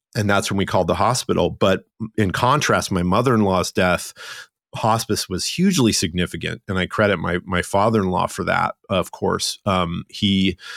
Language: English